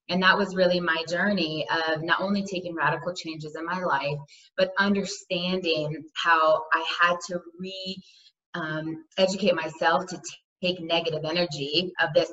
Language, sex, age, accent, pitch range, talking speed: English, female, 20-39, American, 155-180 Hz, 145 wpm